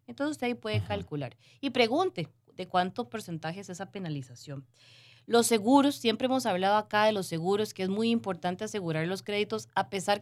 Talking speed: 175 wpm